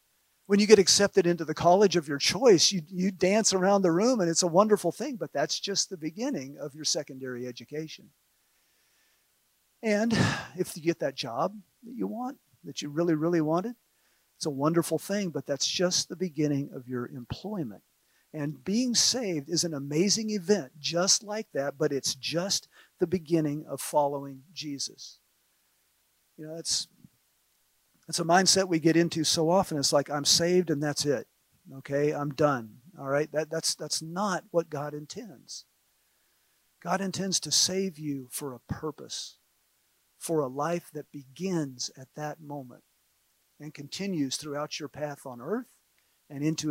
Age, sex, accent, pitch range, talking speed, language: 50-69, male, American, 145-185 Hz, 165 wpm, English